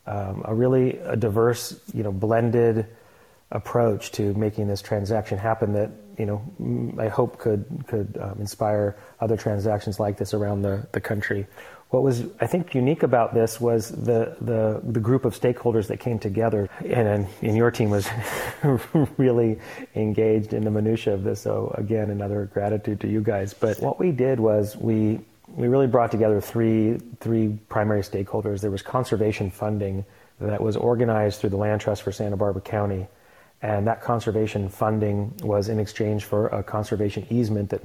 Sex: male